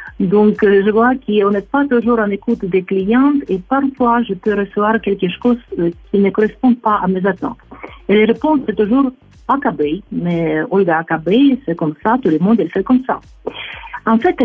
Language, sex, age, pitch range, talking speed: Arabic, female, 50-69, 190-250 Hz, 190 wpm